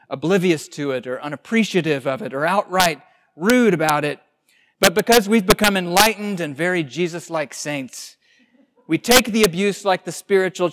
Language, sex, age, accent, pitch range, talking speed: English, male, 40-59, American, 160-215 Hz, 155 wpm